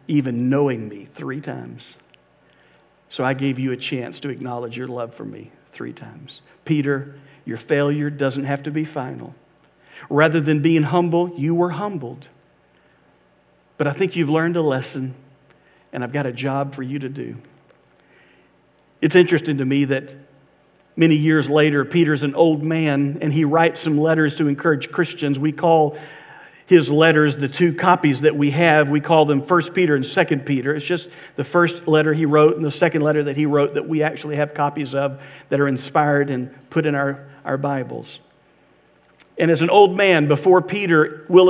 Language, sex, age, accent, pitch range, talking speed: English, male, 50-69, American, 140-165 Hz, 180 wpm